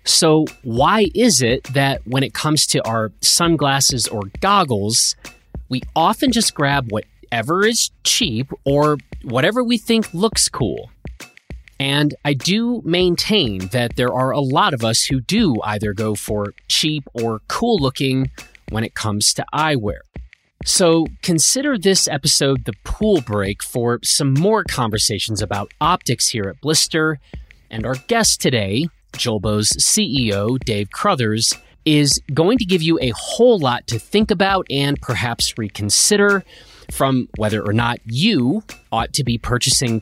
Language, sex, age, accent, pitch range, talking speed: English, male, 30-49, American, 115-175 Hz, 145 wpm